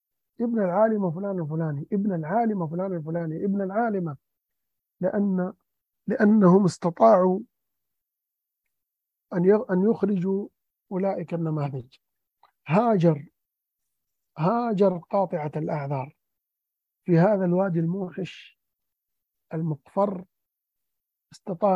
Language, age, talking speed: Arabic, 50-69, 75 wpm